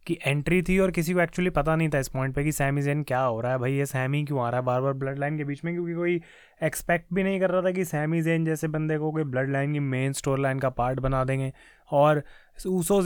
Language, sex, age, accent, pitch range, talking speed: Hindi, male, 20-39, native, 145-185 Hz, 270 wpm